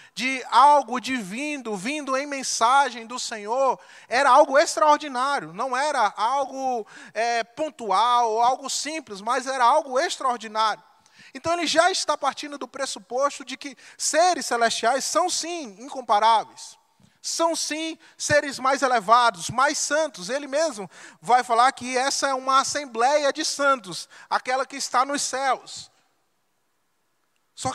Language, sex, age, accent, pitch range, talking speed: Portuguese, male, 20-39, Brazilian, 215-280 Hz, 130 wpm